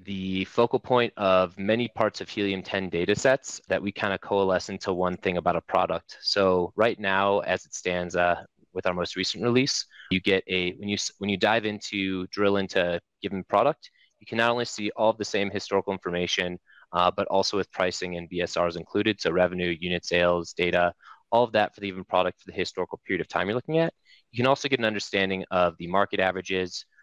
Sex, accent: male, American